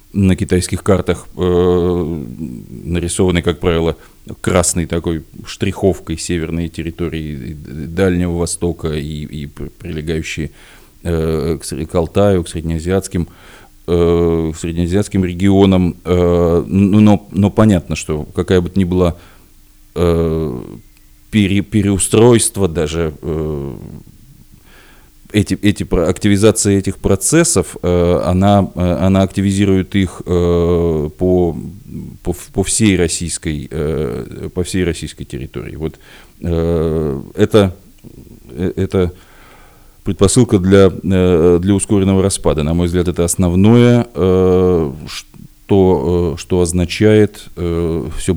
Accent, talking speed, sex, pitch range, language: native, 90 wpm, male, 80-95 Hz, Russian